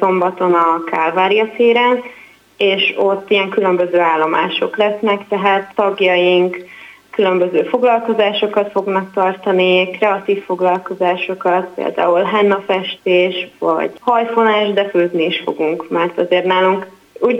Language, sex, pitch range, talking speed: Hungarian, female, 180-210 Hz, 105 wpm